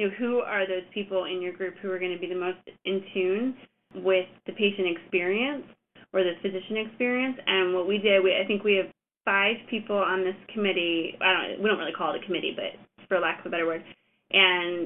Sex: female